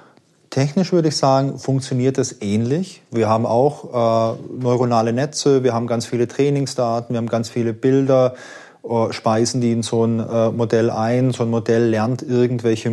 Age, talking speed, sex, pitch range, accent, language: 30-49, 170 wpm, male, 115-130 Hz, German, German